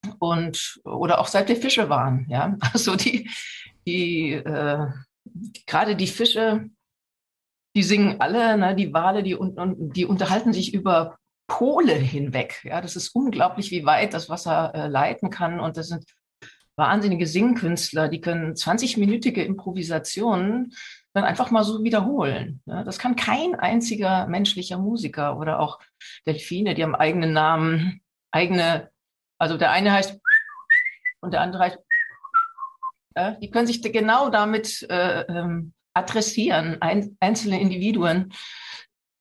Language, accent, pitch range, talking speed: German, German, 165-220 Hz, 140 wpm